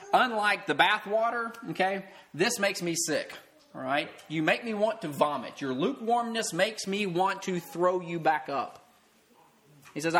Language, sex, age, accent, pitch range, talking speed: English, male, 20-39, American, 145-195 Hz, 170 wpm